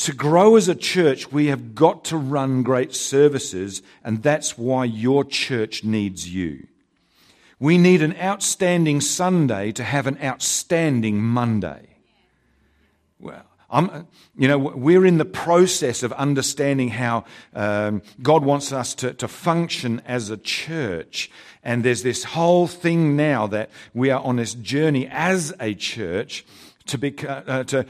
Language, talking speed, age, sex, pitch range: English, 140 wpm, 50-69, male, 125-165 Hz